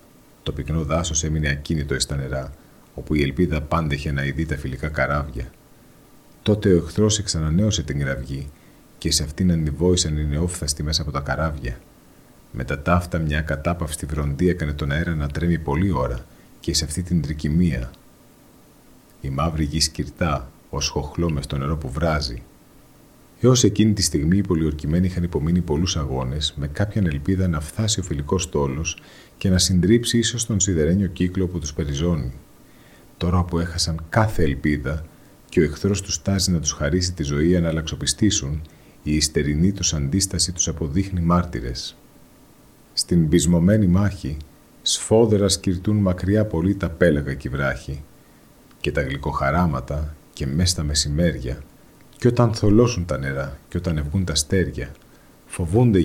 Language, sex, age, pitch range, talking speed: Greek, male, 40-59, 75-90 Hz, 150 wpm